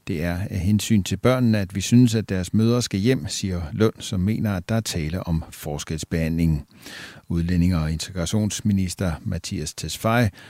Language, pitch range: Danish, 90-120 Hz